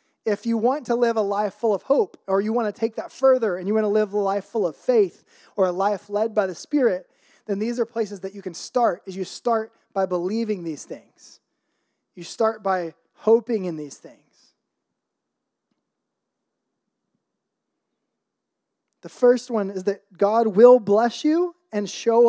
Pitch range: 180-230 Hz